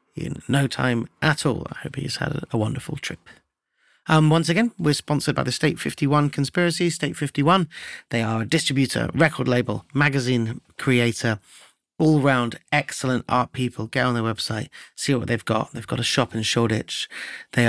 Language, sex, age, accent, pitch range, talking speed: English, male, 30-49, British, 115-145 Hz, 175 wpm